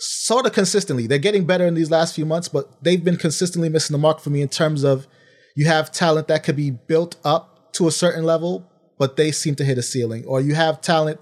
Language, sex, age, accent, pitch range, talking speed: English, male, 30-49, American, 135-165 Hz, 245 wpm